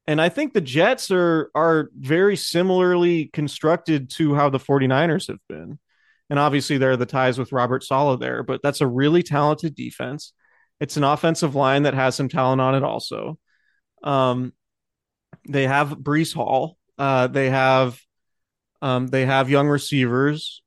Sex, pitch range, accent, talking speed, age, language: male, 130-150 Hz, American, 165 wpm, 30-49, English